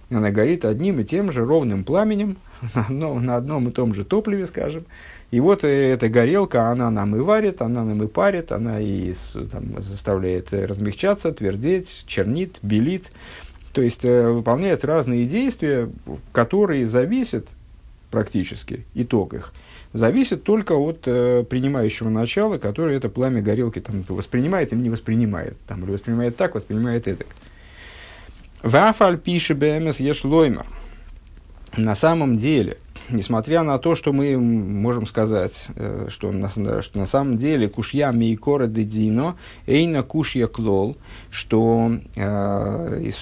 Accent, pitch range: native, 105-140 Hz